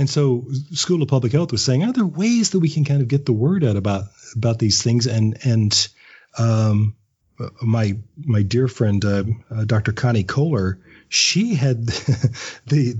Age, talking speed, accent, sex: 40-59, 180 wpm, American, male